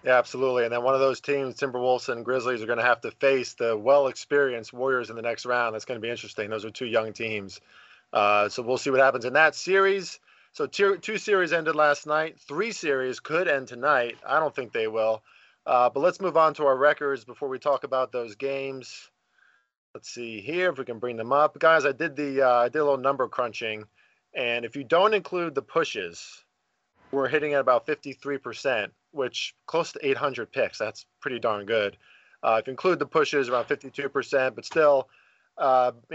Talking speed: 205 wpm